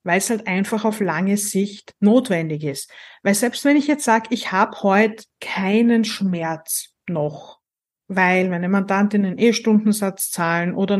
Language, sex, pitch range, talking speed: German, female, 185-215 Hz, 155 wpm